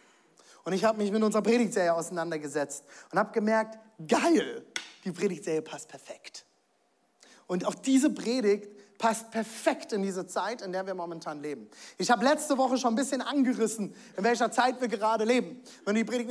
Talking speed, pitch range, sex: 175 wpm, 210-265 Hz, male